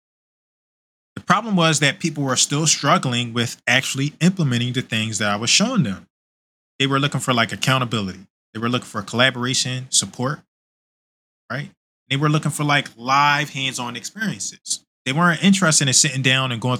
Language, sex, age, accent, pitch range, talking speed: English, male, 20-39, American, 105-135 Hz, 170 wpm